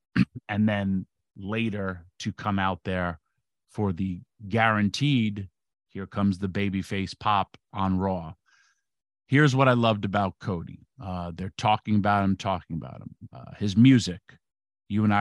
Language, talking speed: English, 145 wpm